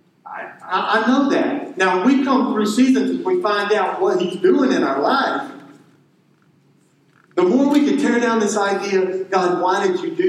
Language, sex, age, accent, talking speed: English, male, 50-69, American, 180 wpm